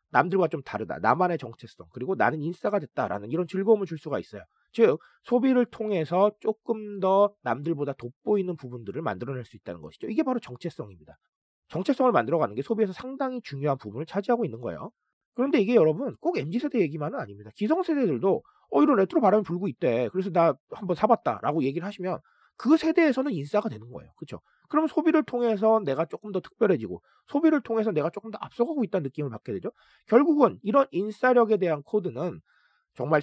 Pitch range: 155-235 Hz